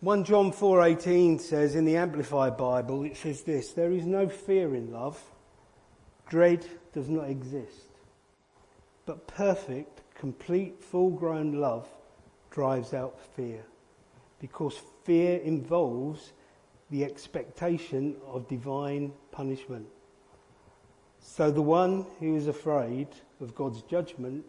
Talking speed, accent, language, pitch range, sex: 115 wpm, British, English, 125-160 Hz, male